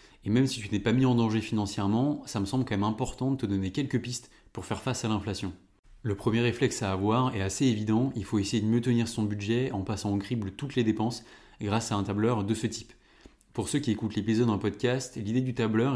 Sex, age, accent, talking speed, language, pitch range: male, 20-39, French, 250 wpm, French, 100-115 Hz